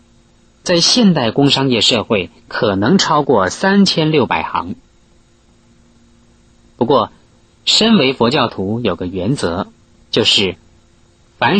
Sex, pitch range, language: male, 115-170 Hz, Chinese